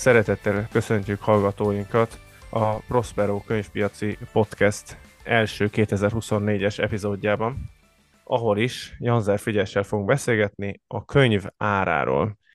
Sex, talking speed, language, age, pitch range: male, 90 wpm, Hungarian, 20-39, 105-115 Hz